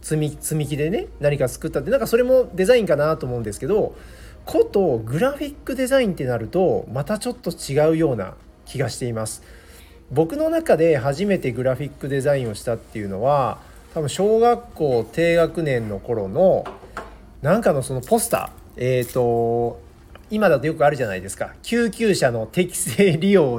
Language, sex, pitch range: Japanese, male, 120-190 Hz